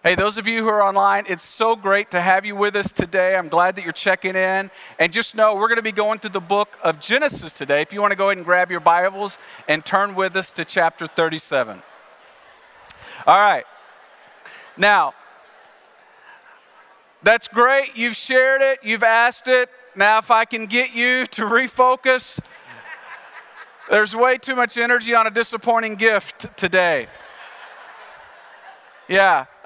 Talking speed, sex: 170 wpm, male